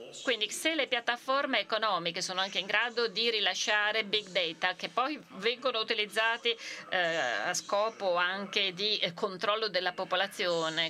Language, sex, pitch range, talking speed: Italian, female, 180-235 Hz, 145 wpm